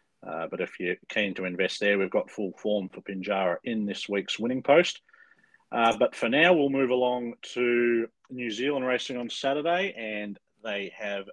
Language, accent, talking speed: English, Australian, 185 wpm